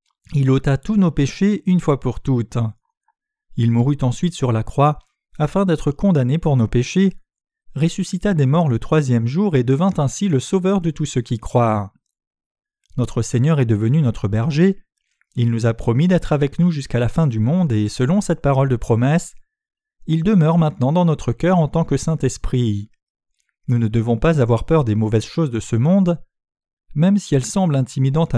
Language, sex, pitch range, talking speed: French, male, 120-170 Hz, 185 wpm